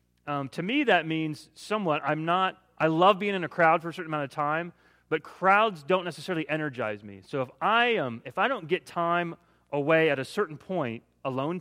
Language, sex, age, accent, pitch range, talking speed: English, male, 30-49, American, 115-170 Hz, 210 wpm